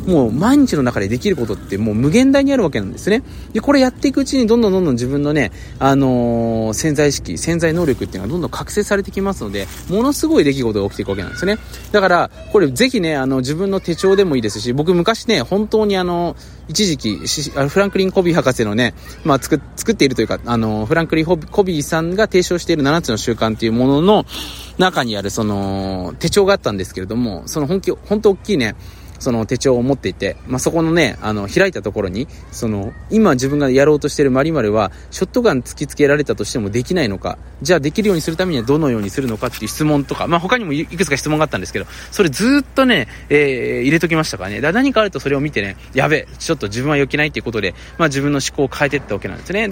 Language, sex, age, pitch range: Japanese, male, 20-39, 115-190 Hz